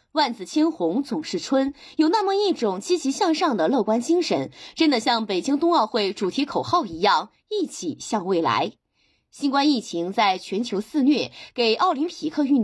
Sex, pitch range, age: female, 215-325 Hz, 20-39